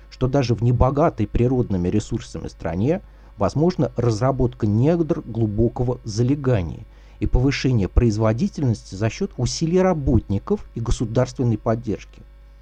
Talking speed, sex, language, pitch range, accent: 105 wpm, male, Russian, 110-145 Hz, native